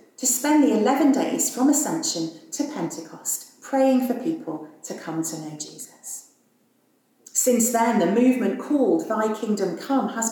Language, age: English, 40-59